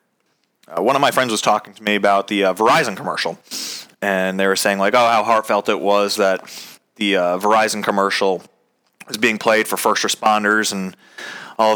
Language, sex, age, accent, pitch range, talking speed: English, male, 30-49, American, 100-120 Hz, 190 wpm